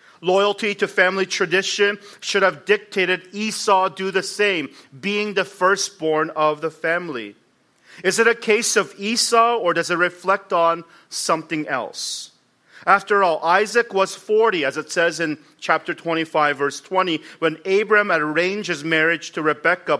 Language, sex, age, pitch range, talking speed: English, male, 40-59, 165-210 Hz, 150 wpm